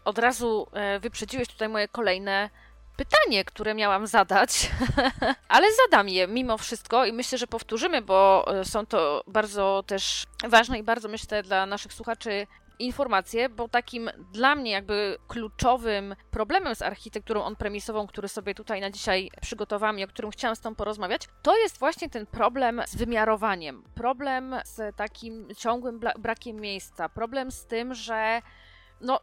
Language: Polish